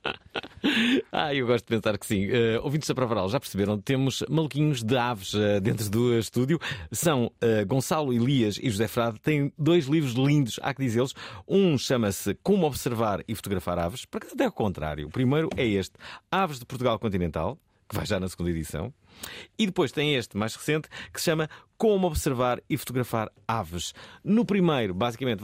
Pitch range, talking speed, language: 105-155 Hz, 185 wpm, Portuguese